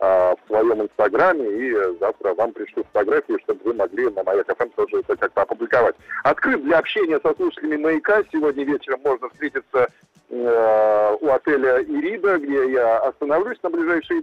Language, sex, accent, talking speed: Russian, male, native, 140 wpm